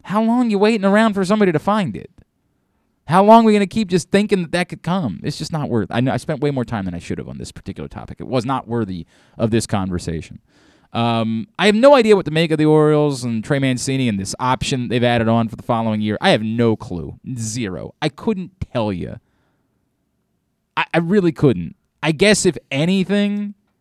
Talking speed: 230 wpm